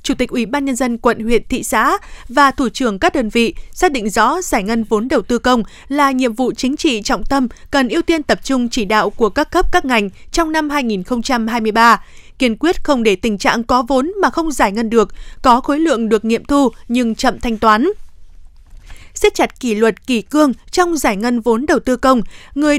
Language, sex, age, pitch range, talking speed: Vietnamese, female, 20-39, 230-295 Hz, 220 wpm